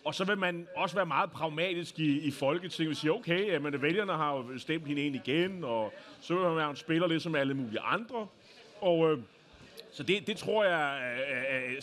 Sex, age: male, 30-49